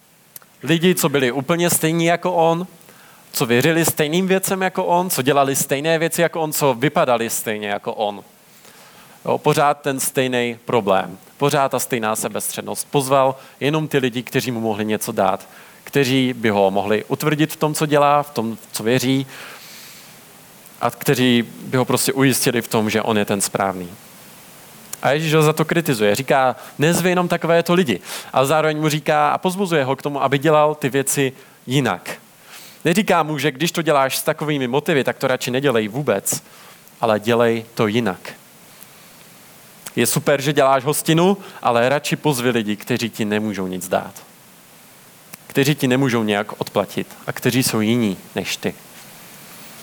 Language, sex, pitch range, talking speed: Czech, male, 120-160 Hz, 165 wpm